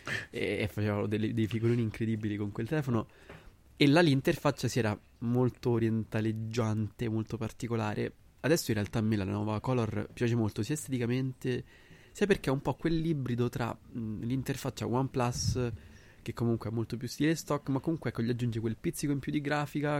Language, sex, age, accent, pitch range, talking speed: Italian, male, 20-39, native, 105-125 Hz, 175 wpm